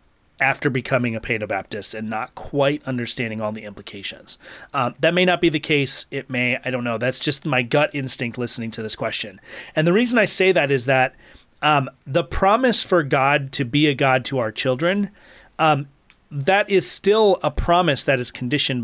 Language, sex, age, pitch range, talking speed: English, male, 30-49, 125-155 Hz, 195 wpm